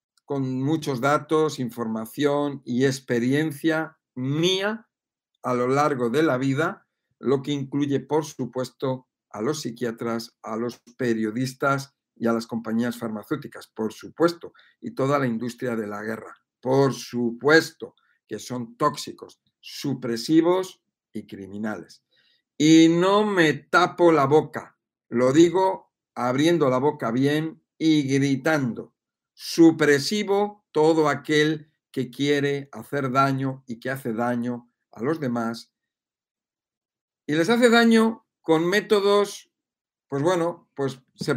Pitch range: 120-160 Hz